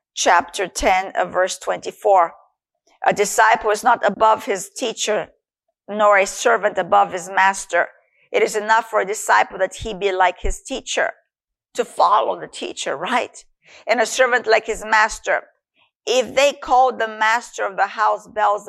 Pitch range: 195-250 Hz